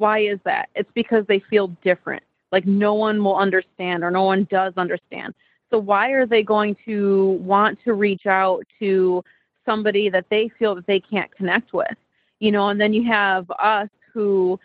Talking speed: 190 wpm